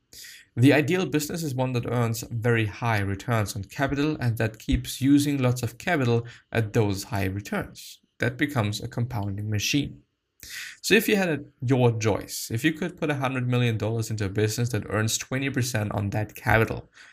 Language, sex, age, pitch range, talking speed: English, male, 20-39, 105-130 Hz, 180 wpm